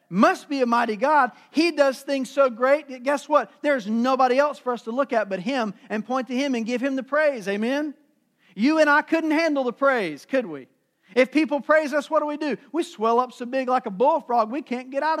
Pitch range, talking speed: 180-290 Hz, 245 wpm